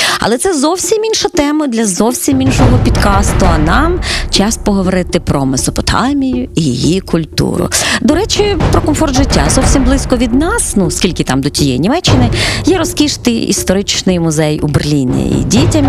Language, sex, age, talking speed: Ukrainian, female, 30-49, 155 wpm